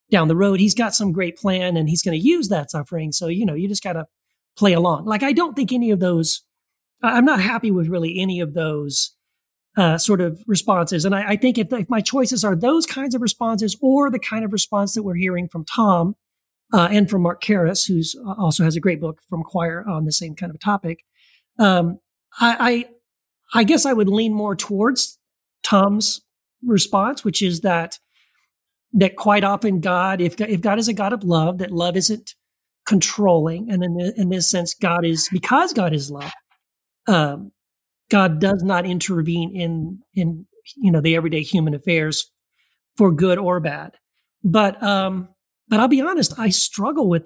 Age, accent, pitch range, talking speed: 40-59, American, 175-225 Hz, 195 wpm